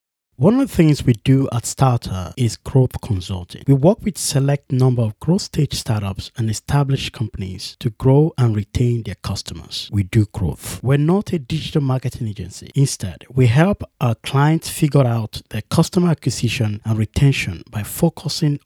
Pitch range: 110-150 Hz